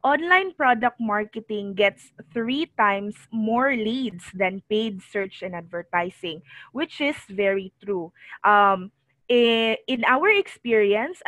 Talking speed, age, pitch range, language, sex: 110 wpm, 20-39, 200-260 Hz, English, female